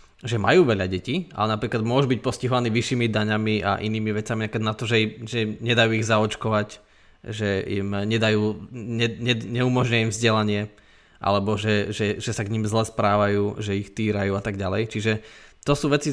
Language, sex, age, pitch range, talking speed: Slovak, male, 20-39, 105-125 Hz, 175 wpm